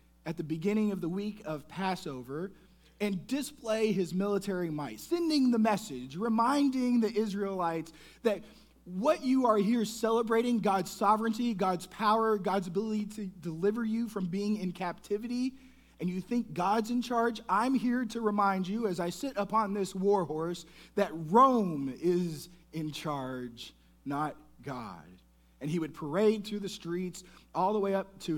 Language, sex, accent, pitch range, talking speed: English, male, American, 155-210 Hz, 160 wpm